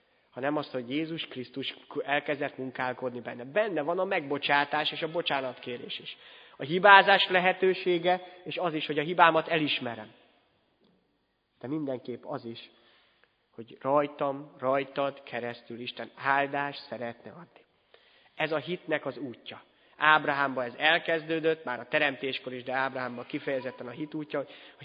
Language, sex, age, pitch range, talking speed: Hungarian, male, 30-49, 125-150 Hz, 140 wpm